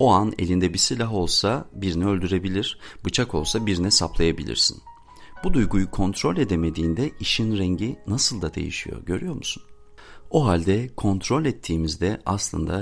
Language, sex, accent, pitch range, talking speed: Turkish, male, native, 80-105 Hz, 130 wpm